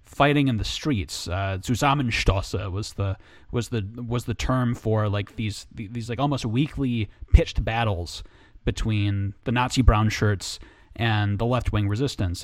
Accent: American